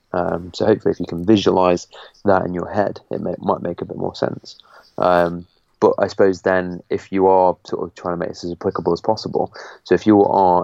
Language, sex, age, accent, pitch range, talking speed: English, male, 20-39, British, 85-95 Hz, 230 wpm